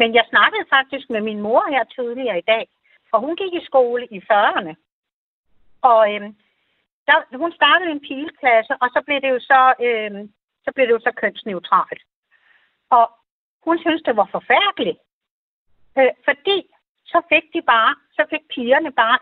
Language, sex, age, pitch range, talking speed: Danish, female, 60-79, 225-315 Hz, 170 wpm